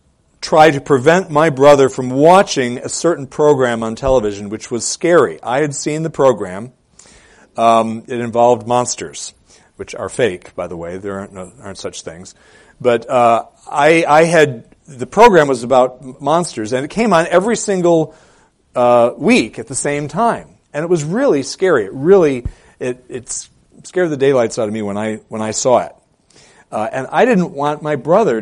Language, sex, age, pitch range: English, male, 40-59, 115-160 Hz